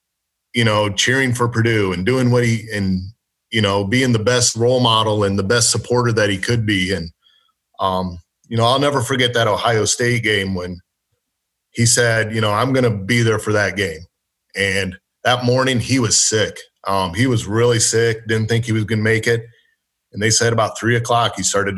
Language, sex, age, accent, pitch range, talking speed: English, male, 30-49, American, 100-120 Hz, 210 wpm